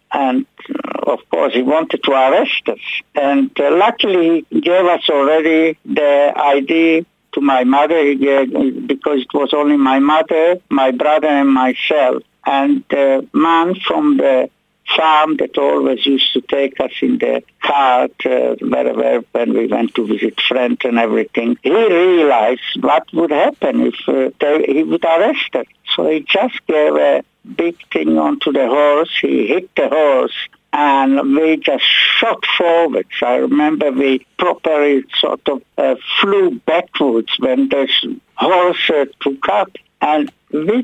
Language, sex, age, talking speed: English, male, 60-79, 145 wpm